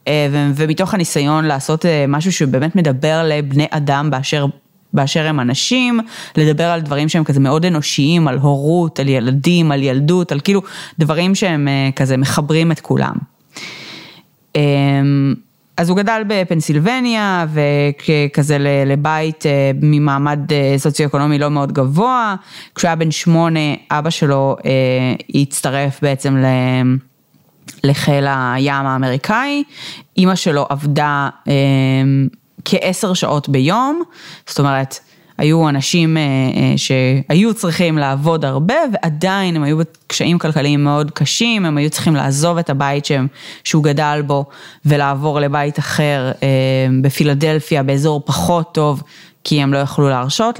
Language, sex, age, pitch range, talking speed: Hebrew, female, 30-49, 140-165 Hz, 120 wpm